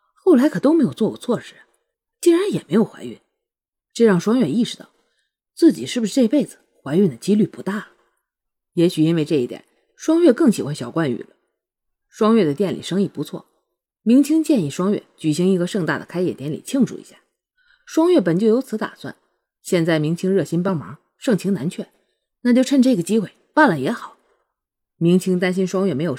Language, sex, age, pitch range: Chinese, female, 20-39, 170-270 Hz